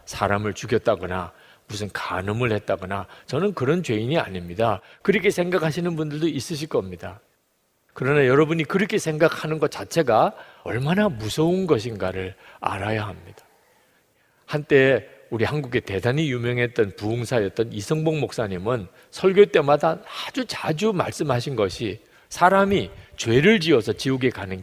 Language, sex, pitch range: Korean, male, 100-155 Hz